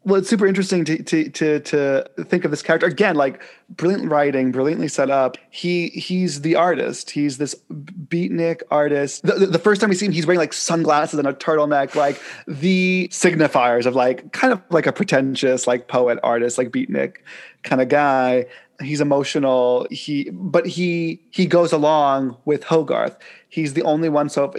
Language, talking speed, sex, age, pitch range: English, 185 wpm, male, 20-39, 130-170 Hz